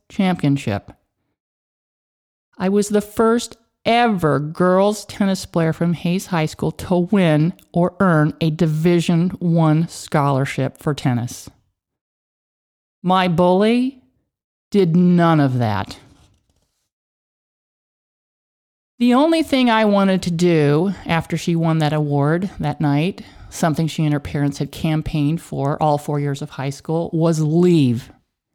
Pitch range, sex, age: 145-190 Hz, male, 50-69